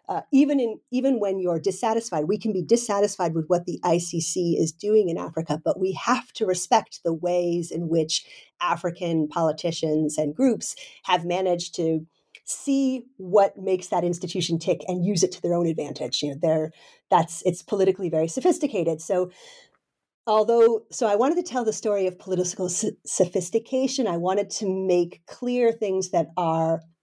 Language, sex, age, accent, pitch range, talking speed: English, female, 40-59, American, 170-210 Hz, 170 wpm